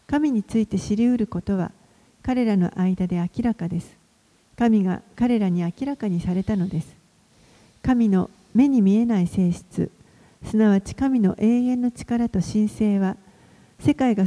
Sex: female